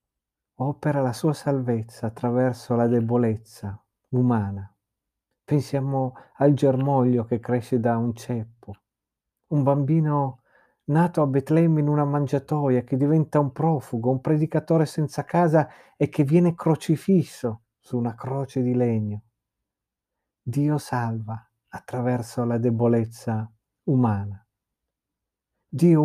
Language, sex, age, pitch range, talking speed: Italian, male, 50-69, 115-140 Hz, 110 wpm